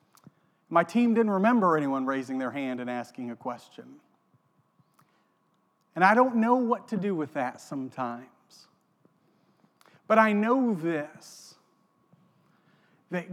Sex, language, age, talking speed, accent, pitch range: male, English, 40-59, 120 wpm, American, 145-195 Hz